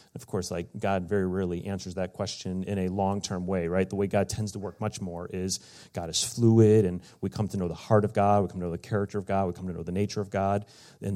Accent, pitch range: American, 100-130 Hz